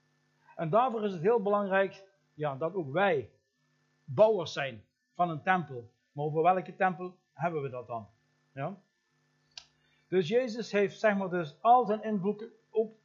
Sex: male